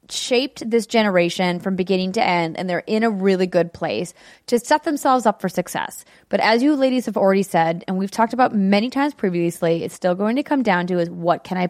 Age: 20-39